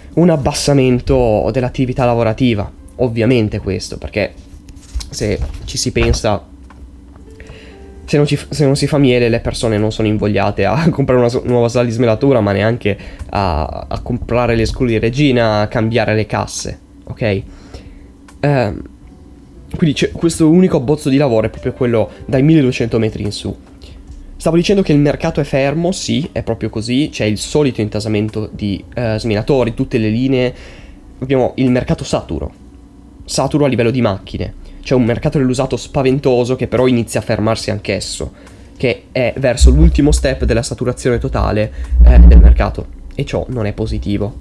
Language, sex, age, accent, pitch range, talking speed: Italian, male, 10-29, native, 95-130 Hz, 160 wpm